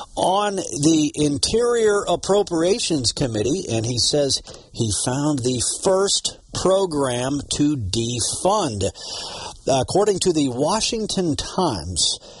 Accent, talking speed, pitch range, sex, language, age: American, 95 wpm, 110-155 Hz, male, English, 50-69